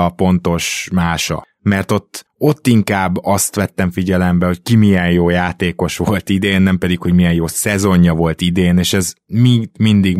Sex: male